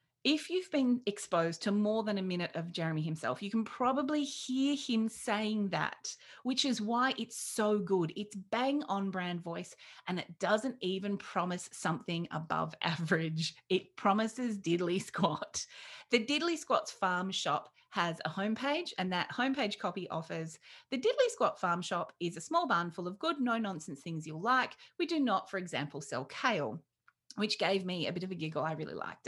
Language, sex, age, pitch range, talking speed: English, female, 30-49, 170-250 Hz, 180 wpm